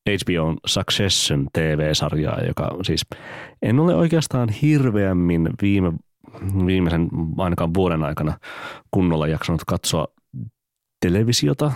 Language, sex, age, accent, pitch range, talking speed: Finnish, male, 30-49, native, 80-95 Hz, 95 wpm